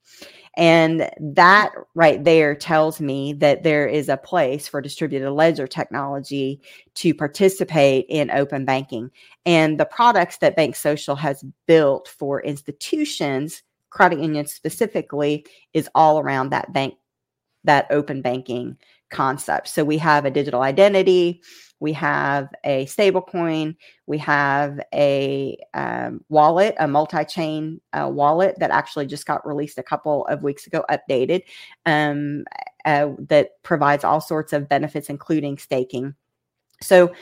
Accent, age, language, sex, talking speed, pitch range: American, 40-59, English, female, 135 wpm, 140-165 Hz